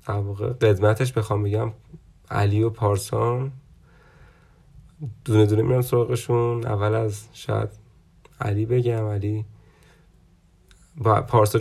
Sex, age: male, 30-49